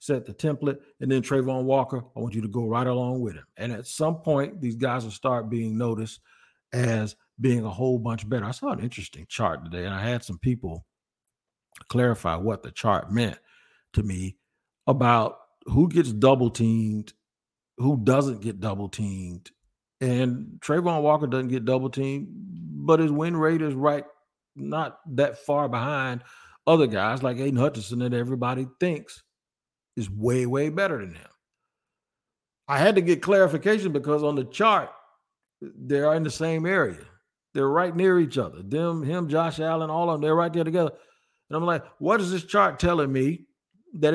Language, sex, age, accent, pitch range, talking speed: English, male, 50-69, American, 115-160 Hz, 180 wpm